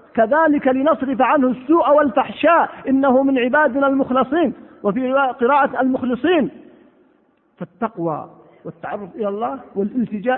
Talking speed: 100 wpm